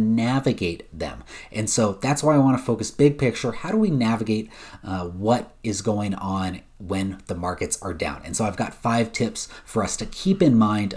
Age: 30-49